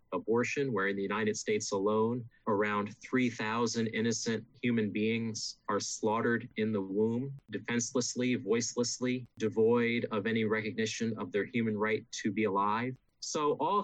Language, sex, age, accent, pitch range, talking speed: English, male, 30-49, American, 110-125 Hz, 140 wpm